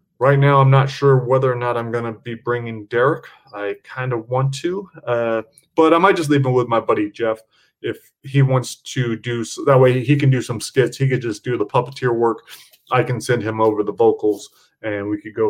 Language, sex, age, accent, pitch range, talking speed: English, male, 20-39, American, 115-140 Hz, 230 wpm